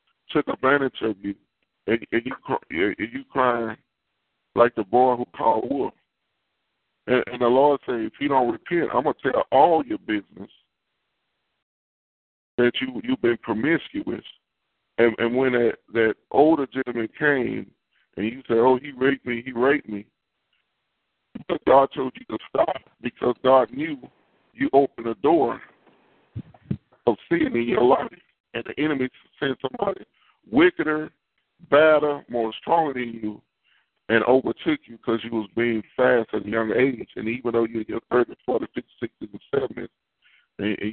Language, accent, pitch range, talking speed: English, American, 115-135 Hz, 160 wpm